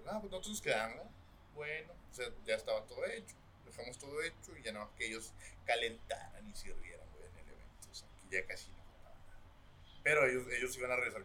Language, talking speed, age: Spanish, 225 wpm, 30-49